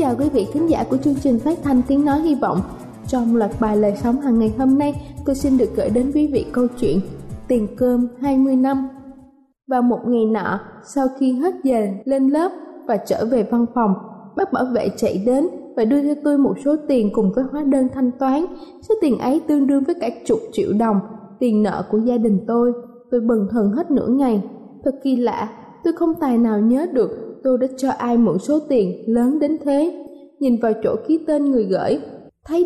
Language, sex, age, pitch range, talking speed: Vietnamese, female, 20-39, 230-295 Hz, 220 wpm